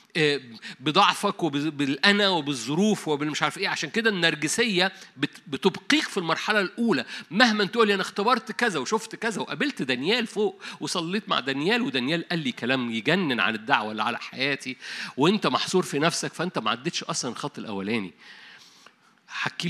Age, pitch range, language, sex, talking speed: 50-69, 150-210 Hz, Arabic, male, 145 wpm